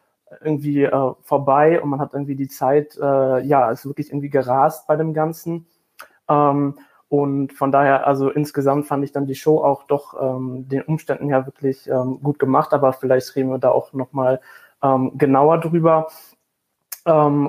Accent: German